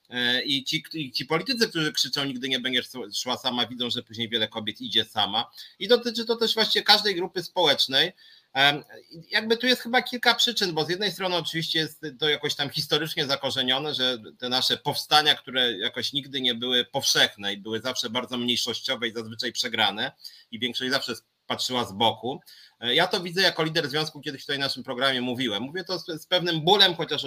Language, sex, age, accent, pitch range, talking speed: Polish, male, 30-49, native, 125-170 Hz, 185 wpm